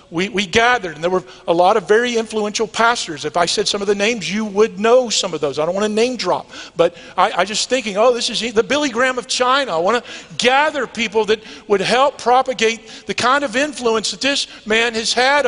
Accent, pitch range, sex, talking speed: American, 210-265 Hz, male, 240 wpm